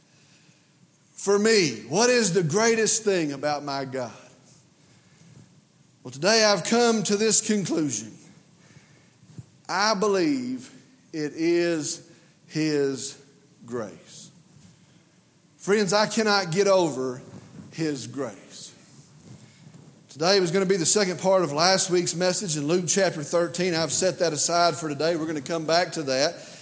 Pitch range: 160-210 Hz